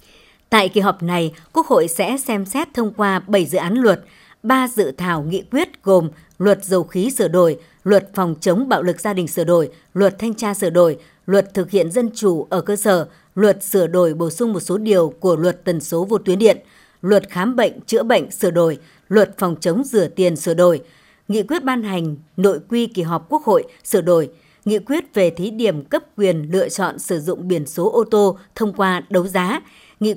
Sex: male